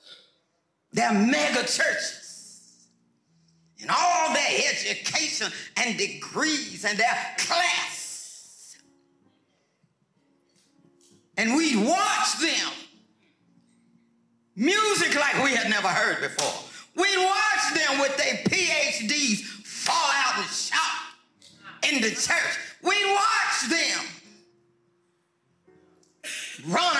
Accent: American